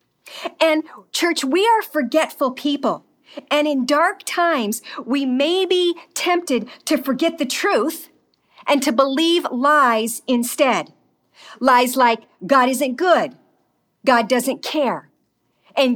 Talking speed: 120 wpm